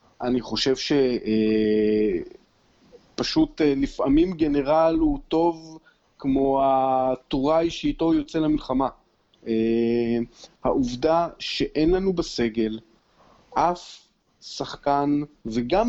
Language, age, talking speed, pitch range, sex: Hebrew, 40-59, 85 wpm, 130-180 Hz, male